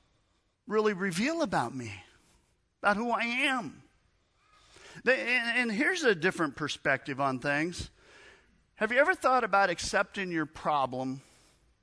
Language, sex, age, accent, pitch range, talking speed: English, male, 50-69, American, 110-155 Hz, 115 wpm